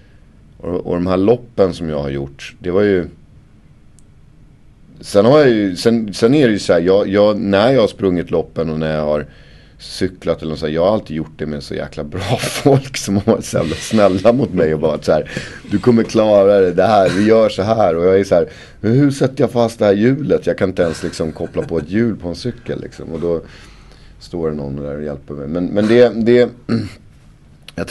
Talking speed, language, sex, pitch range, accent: 220 wpm, English, male, 80-105 Hz, Swedish